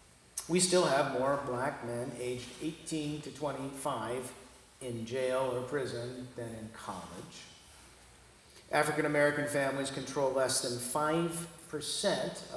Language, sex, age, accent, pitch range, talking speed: English, male, 50-69, American, 120-150 Hz, 115 wpm